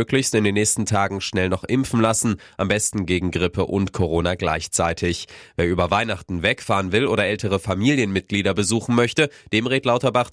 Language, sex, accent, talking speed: German, male, German, 165 wpm